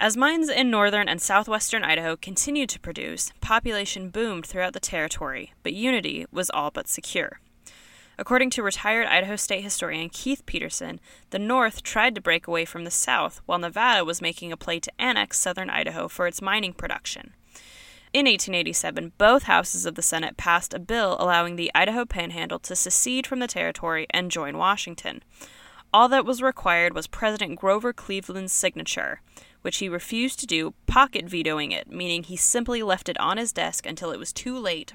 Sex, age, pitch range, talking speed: female, 20-39, 175-235 Hz, 175 wpm